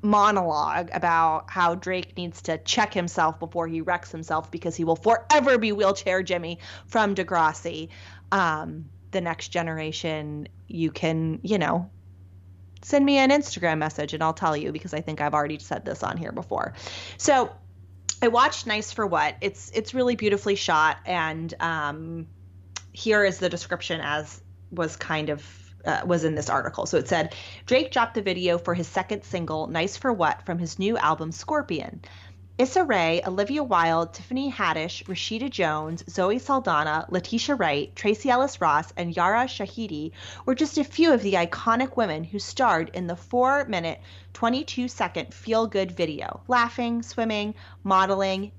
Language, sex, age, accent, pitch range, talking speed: English, female, 30-49, American, 155-215 Hz, 165 wpm